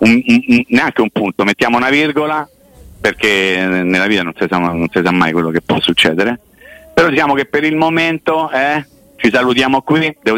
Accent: native